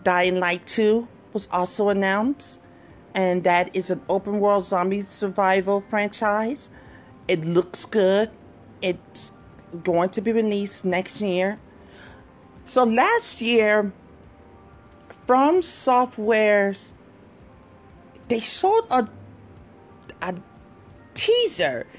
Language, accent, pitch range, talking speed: English, American, 185-230 Hz, 95 wpm